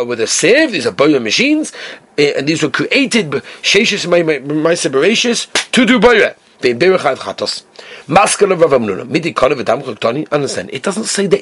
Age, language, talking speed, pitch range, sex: 40-59, English, 170 wpm, 180-260 Hz, male